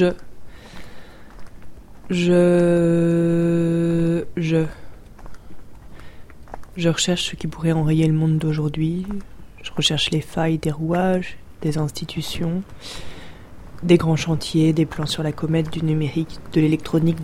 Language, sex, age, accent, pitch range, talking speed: French, female, 20-39, French, 150-170 Hz, 110 wpm